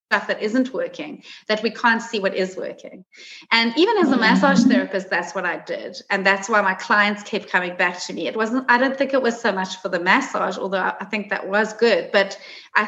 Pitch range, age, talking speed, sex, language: 195-245 Hz, 30-49, 240 wpm, female, English